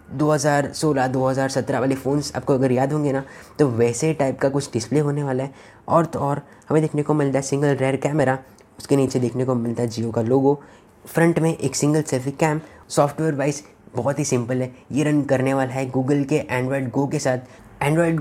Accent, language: native, Hindi